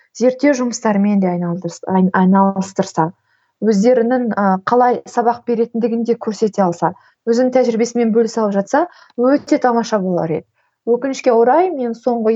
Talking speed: 105 wpm